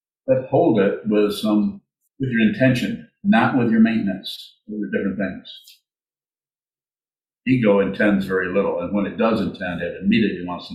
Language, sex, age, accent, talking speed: English, male, 50-69, American, 160 wpm